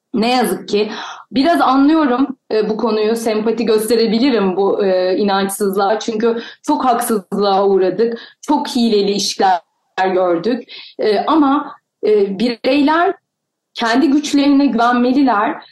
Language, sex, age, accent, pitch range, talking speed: Turkish, female, 30-49, native, 210-265 Hz, 105 wpm